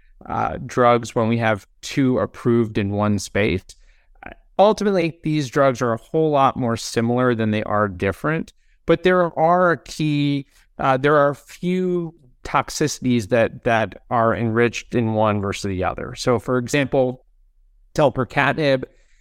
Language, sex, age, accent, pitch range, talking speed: English, male, 30-49, American, 110-145 Hz, 145 wpm